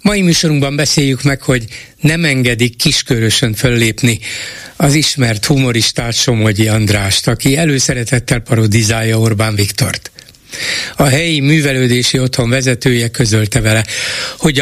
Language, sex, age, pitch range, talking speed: Hungarian, male, 60-79, 120-155 Hz, 110 wpm